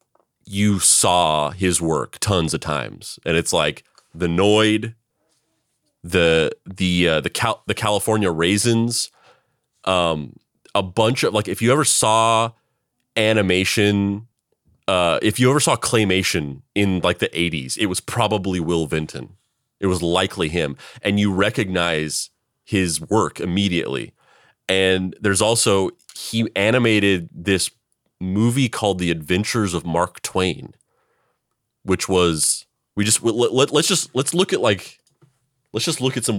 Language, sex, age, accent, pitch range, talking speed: English, male, 30-49, American, 85-105 Hz, 135 wpm